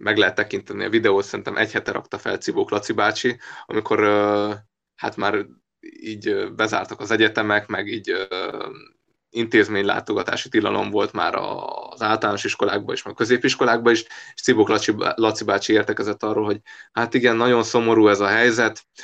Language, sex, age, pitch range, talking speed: Hungarian, male, 20-39, 105-135 Hz, 150 wpm